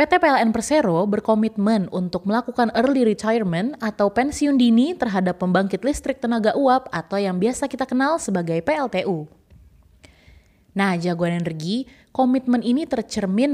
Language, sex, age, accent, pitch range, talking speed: Indonesian, female, 20-39, native, 175-245 Hz, 130 wpm